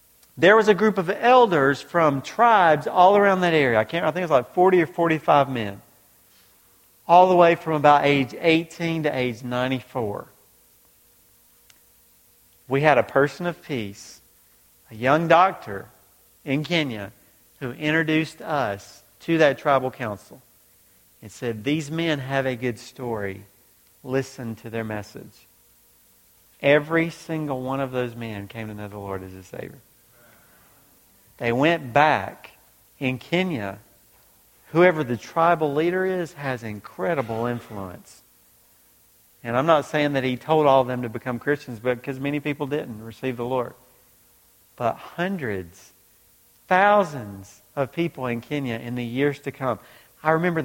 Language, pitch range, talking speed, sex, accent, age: English, 115-160 Hz, 145 wpm, male, American, 50-69